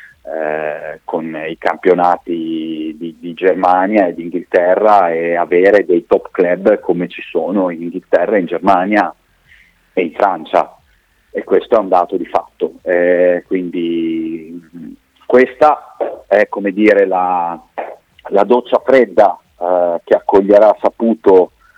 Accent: native